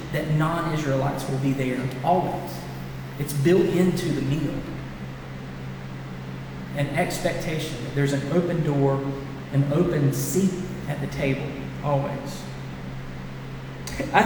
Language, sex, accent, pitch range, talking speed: English, male, American, 130-175 Hz, 105 wpm